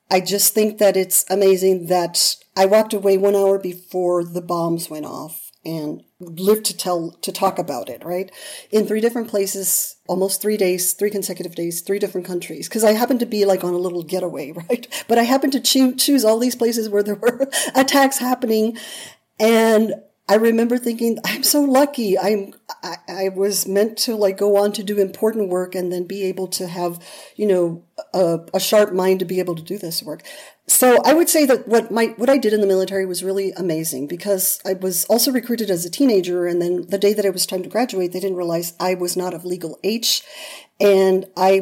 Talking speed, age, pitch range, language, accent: 210 wpm, 40-59, 180-220 Hz, English, American